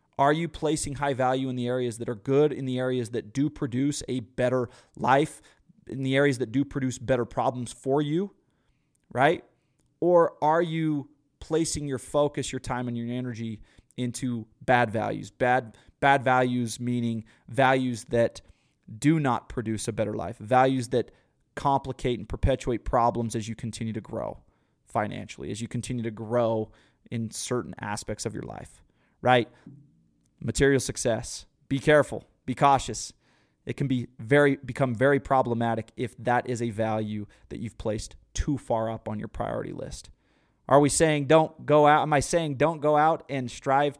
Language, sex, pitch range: English, male, 115-140 Hz